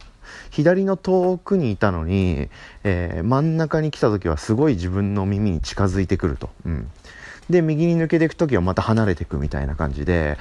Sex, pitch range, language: male, 85-115 Hz, Japanese